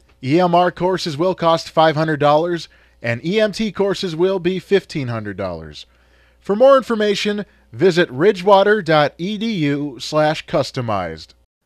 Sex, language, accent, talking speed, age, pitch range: male, English, American, 85 wpm, 30-49, 140-210 Hz